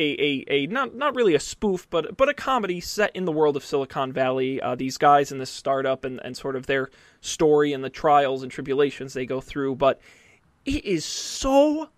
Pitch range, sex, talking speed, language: 135-180 Hz, male, 215 wpm, English